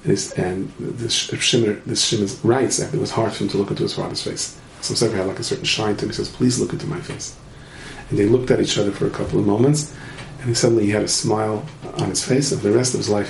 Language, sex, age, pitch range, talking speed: English, male, 40-59, 110-135 Hz, 280 wpm